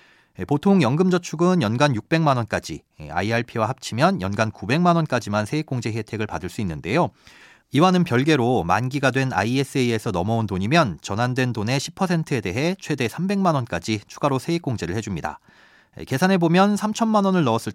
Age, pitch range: 40-59, 110-170 Hz